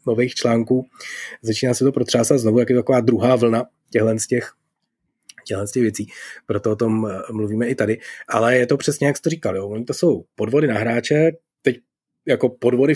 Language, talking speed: Czech, 180 wpm